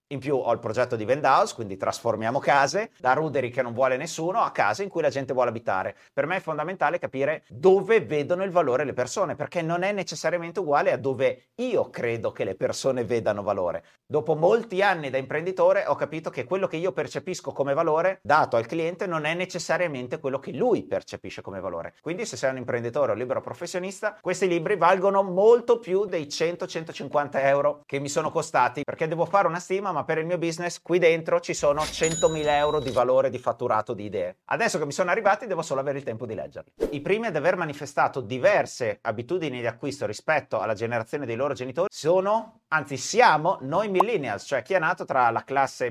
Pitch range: 135-185 Hz